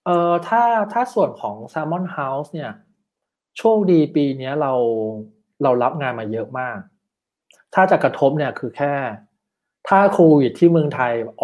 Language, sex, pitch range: Thai, male, 120-165 Hz